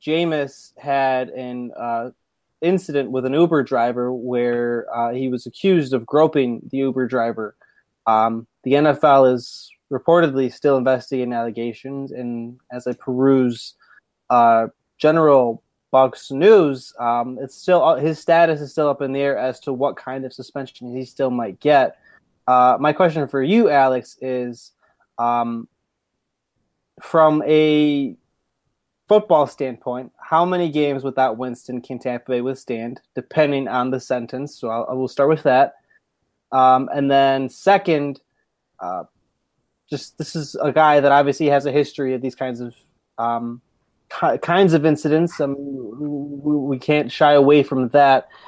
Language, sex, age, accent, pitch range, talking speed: English, male, 20-39, American, 125-150 Hz, 150 wpm